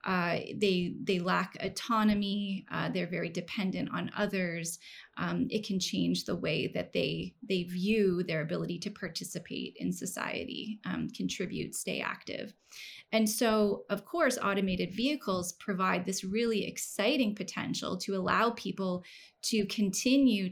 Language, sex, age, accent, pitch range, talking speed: English, female, 20-39, American, 185-220 Hz, 135 wpm